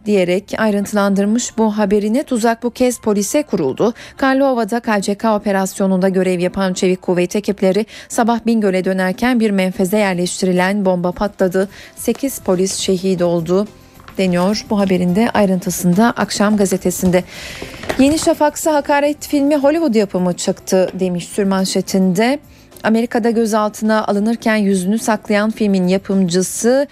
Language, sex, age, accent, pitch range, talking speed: Turkish, female, 40-59, native, 190-235 Hz, 115 wpm